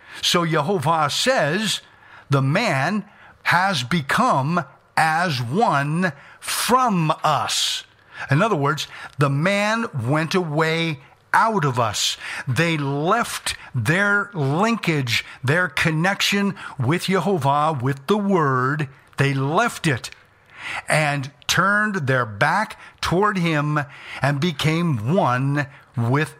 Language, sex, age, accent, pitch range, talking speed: English, male, 50-69, American, 135-185 Hz, 100 wpm